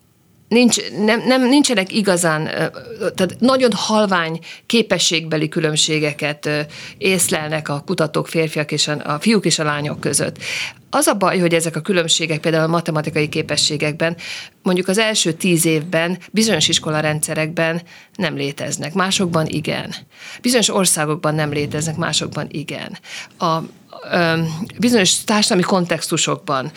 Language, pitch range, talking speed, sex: Hungarian, 155-185 Hz, 125 wpm, female